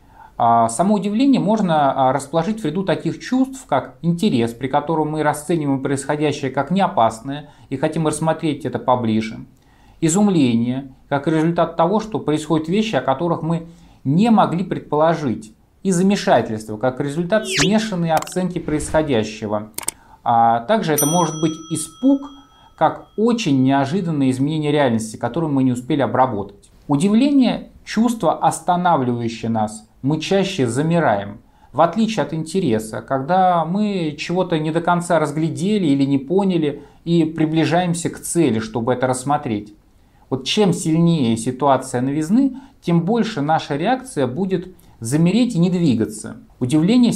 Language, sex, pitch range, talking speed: Russian, male, 125-175 Hz, 130 wpm